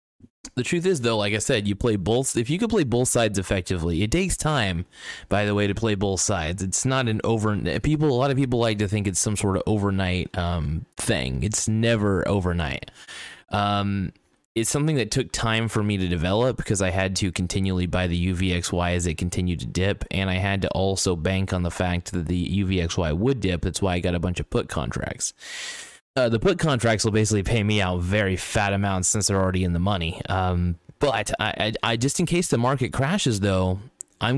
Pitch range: 90-115 Hz